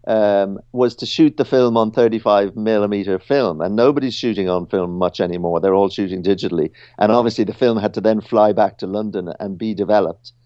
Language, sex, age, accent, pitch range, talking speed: English, male, 50-69, British, 100-120 Hz, 200 wpm